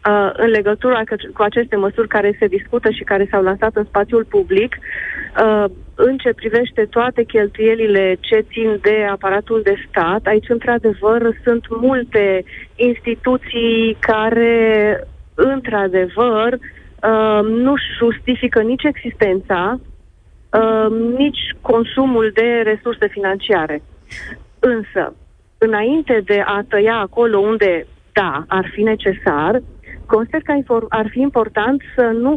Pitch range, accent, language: 215-255 Hz, native, Romanian